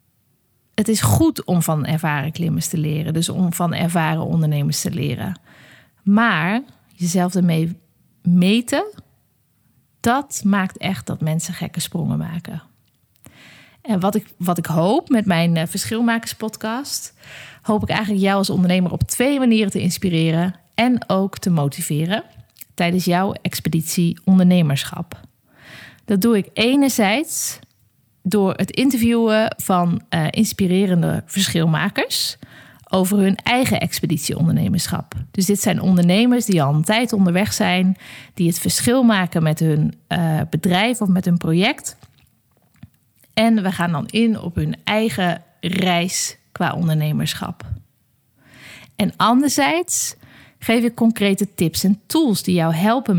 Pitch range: 160-210 Hz